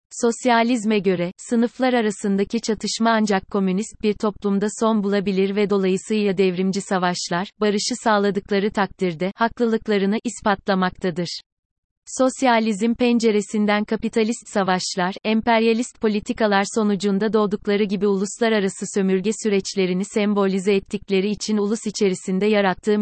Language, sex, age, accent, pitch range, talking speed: Turkish, female, 30-49, native, 195-220 Hz, 100 wpm